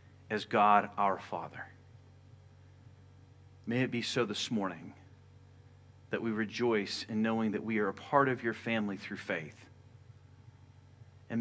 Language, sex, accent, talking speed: English, male, American, 135 wpm